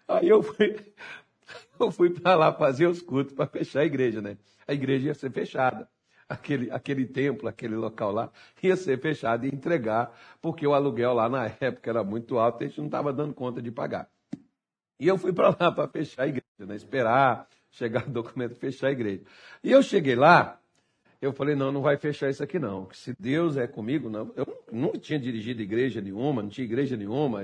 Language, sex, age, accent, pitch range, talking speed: Portuguese, male, 60-79, Brazilian, 120-160 Hz, 205 wpm